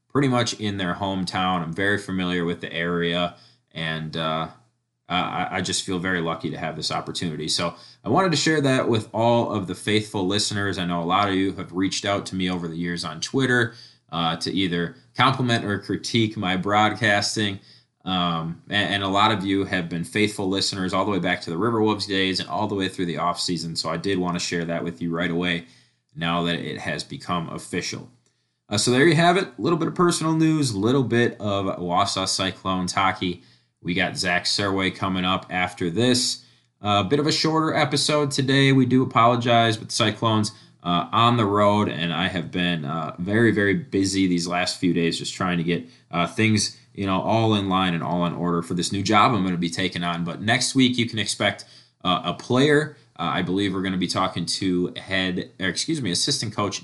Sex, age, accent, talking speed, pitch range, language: male, 20-39, American, 220 wpm, 90-115 Hz, English